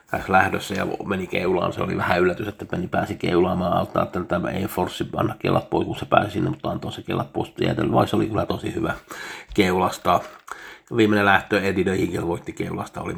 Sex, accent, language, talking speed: male, native, Finnish, 205 wpm